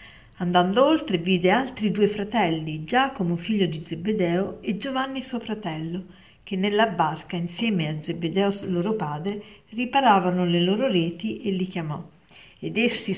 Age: 50-69